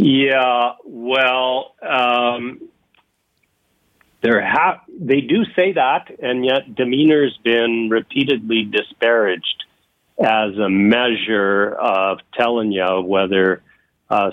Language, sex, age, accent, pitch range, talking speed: English, male, 50-69, American, 95-120 Hz, 90 wpm